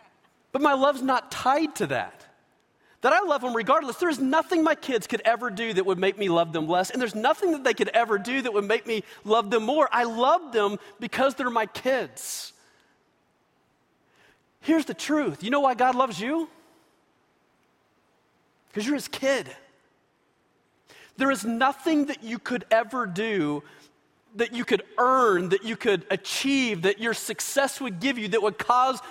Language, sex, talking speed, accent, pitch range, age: English, male, 180 wpm, American, 210-275 Hz, 40-59